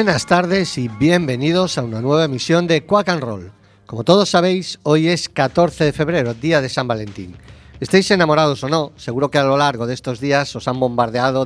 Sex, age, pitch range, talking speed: male, 40-59, 115-150 Hz, 205 wpm